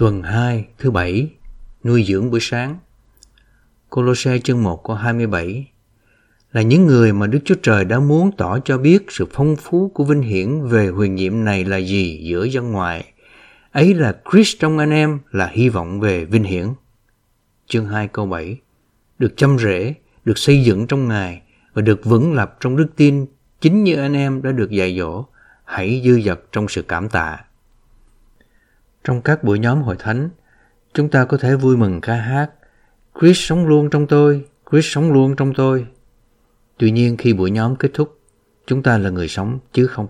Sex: male